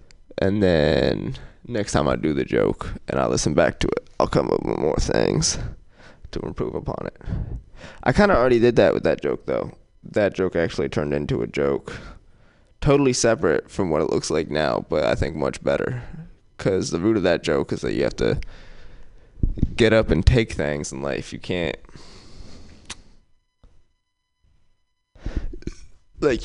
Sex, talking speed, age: male, 170 wpm, 20-39